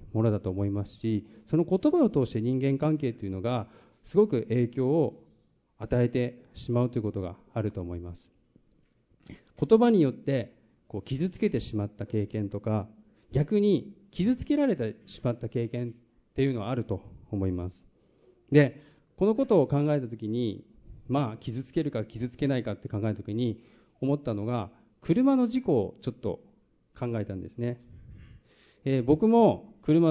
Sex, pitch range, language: male, 105-135 Hz, Japanese